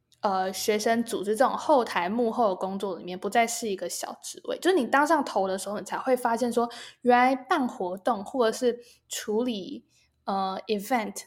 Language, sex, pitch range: Chinese, female, 195-250 Hz